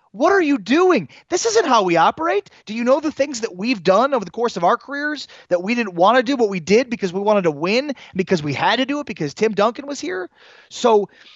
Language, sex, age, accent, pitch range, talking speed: English, male, 30-49, American, 140-205 Hz, 265 wpm